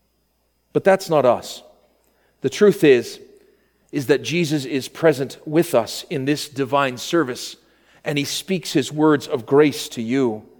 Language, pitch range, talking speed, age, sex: English, 150-210 Hz, 155 wpm, 40-59, male